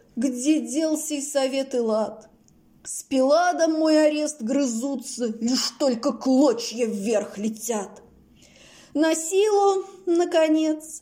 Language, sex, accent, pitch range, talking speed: Russian, female, native, 200-285 Hz, 105 wpm